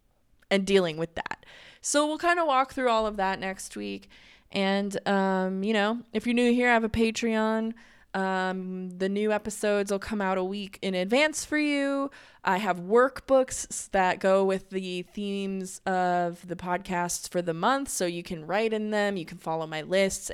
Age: 20-39